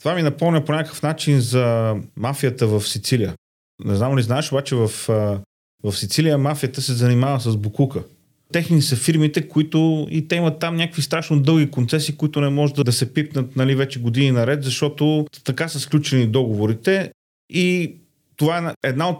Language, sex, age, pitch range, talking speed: Bulgarian, male, 30-49, 125-155 Hz, 170 wpm